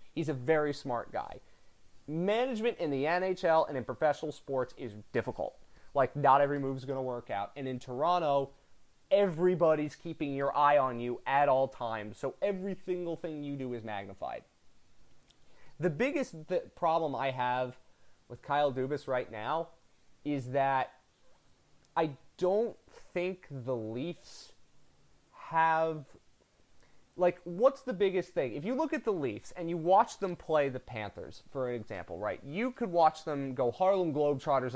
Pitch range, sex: 125-175 Hz, male